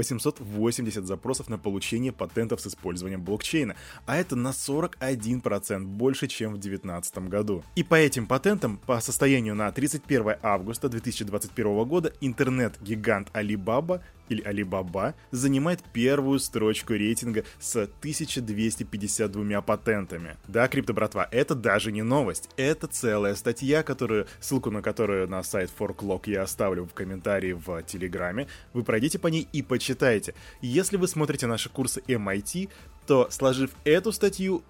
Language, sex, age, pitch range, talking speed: Russian, male, 20-39, 105-140 Hz, 135 wpm